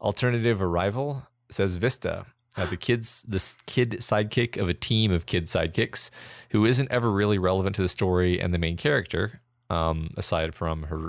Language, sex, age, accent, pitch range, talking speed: English, male, 30-49, American, 85-110 Hz, 170 wpm